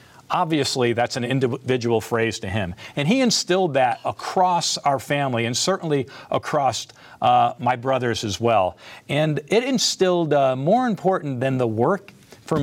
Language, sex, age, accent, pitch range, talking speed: English, male, 50-69, American, 120-160 Hz, 150 wpm